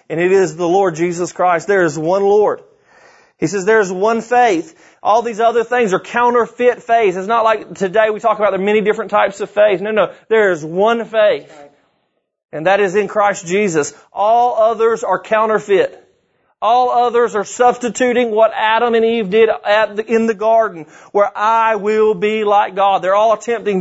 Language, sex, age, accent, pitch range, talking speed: English, male, 30-49, American, 190-220 Hz, 195 wpm